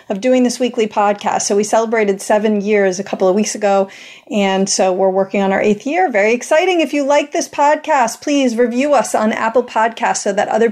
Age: 40-59